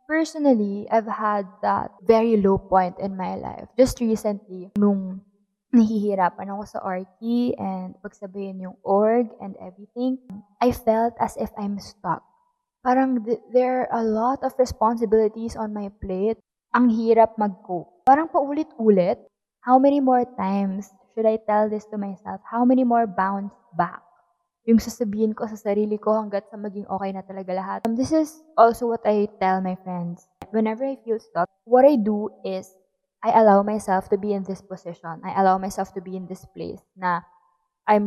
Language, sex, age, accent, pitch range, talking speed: Filipino, female, 20-39, native, 190-235 Hz, 170 wpm